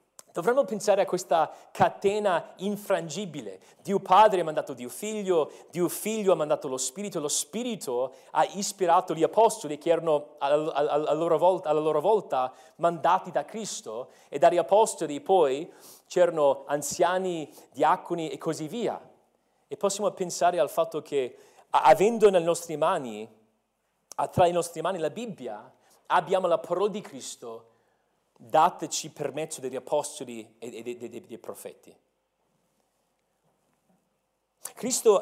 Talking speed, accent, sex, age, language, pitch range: 130 wpm, native, male, 40-59, Italian, 155-225 Hz